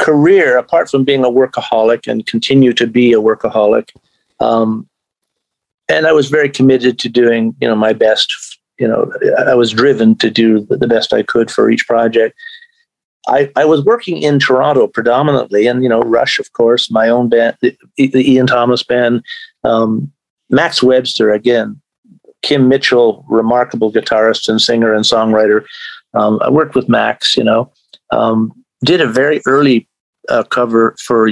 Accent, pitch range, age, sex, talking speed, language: American, 115-130 Hz, 50-69, male, 165 wpm, English